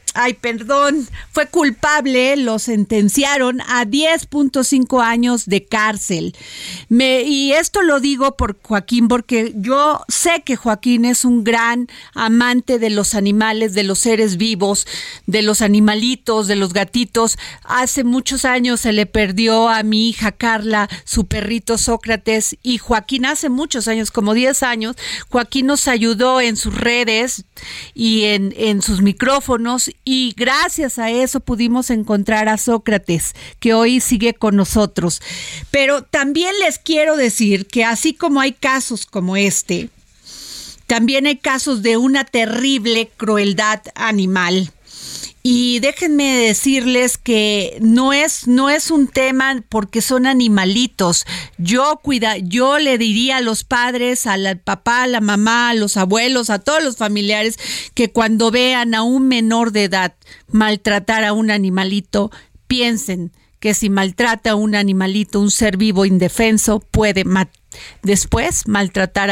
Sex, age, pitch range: female, 40-59, 210-255 Hz